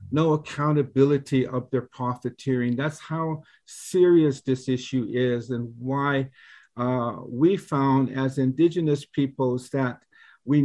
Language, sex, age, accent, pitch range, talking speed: English, male, 50-69, American, 130-155 Hz, 120 wpm